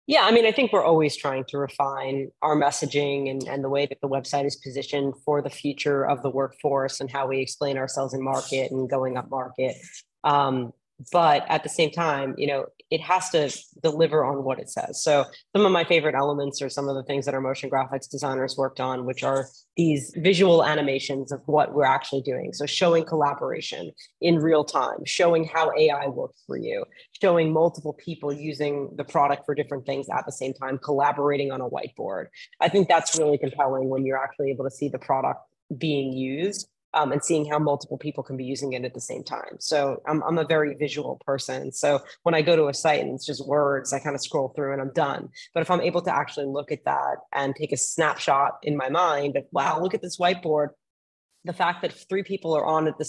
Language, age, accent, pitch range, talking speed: English, 30-49, American, 135-160 Hz, 220 wpm